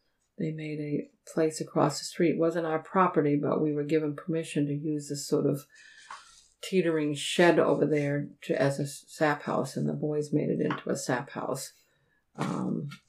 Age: 50-69